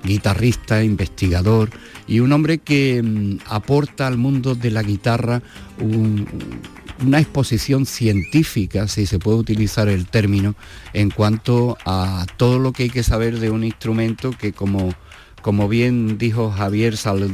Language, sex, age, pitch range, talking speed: Spanish, male, 50-69, 95-115 Hz, 135 wpm